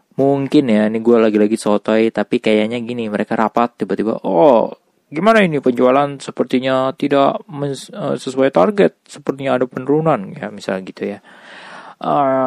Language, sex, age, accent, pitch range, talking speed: Indonesian, male, 20-39, native, 115-155 Hz, 140 wpm